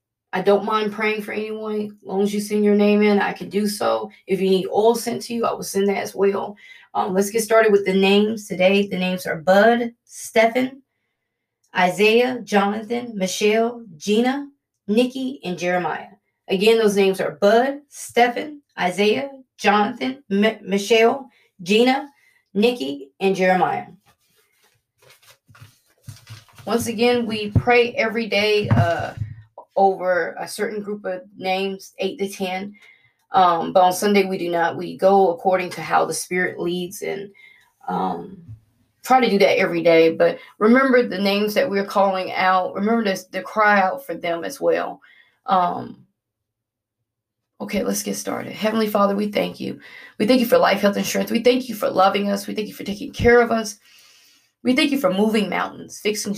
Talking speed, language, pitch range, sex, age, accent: 170 wpm, English, 185-225 Hz, female, 20-39, American